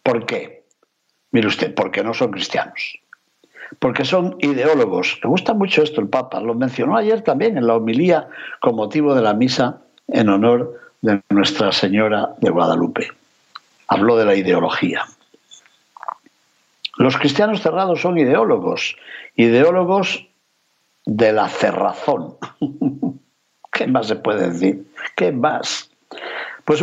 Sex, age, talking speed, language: male, 60-79, 125 wpm, Spanish